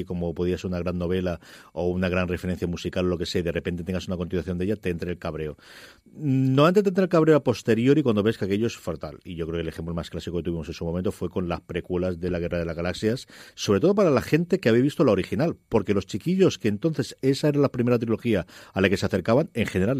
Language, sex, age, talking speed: Spanish, male, 40-59, 270 wpm